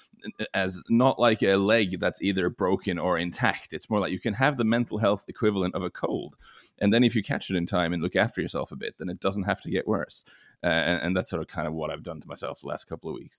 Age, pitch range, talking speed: 30-49, 90-115 Hz, 275 wpm